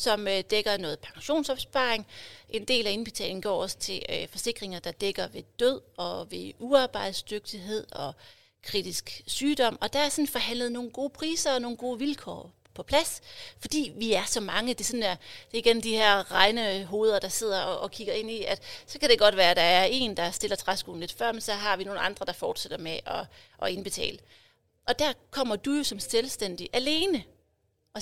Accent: native